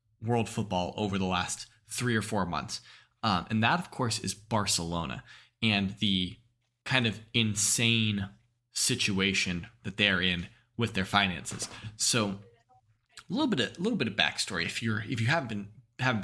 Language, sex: English, male